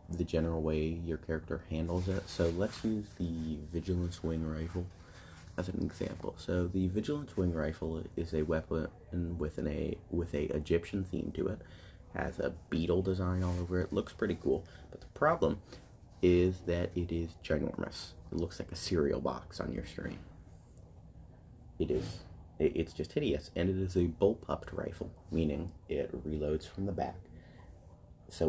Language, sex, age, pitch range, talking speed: Amharic, male, 30-49, 80-95 Hz, 175 wpm